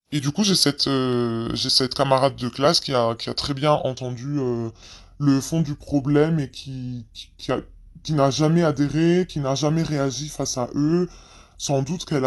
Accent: French